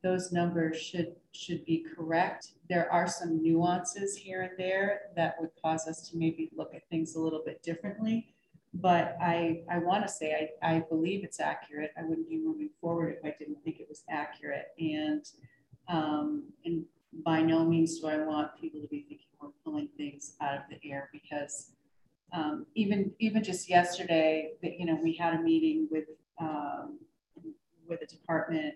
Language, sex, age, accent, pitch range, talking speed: English, female, 40-59, American, 155-185 Hz, 175 wpm